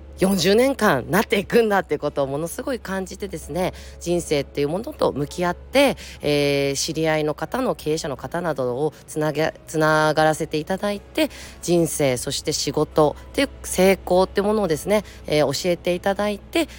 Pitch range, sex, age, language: 140-195 Hz, female, 20-39, Japanese